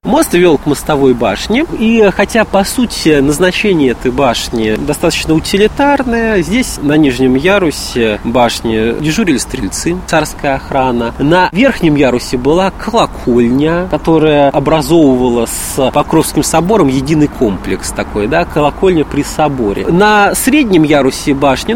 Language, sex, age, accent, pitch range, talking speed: Russian, male, 20-39, native, 140-205 Hz, 120 wpm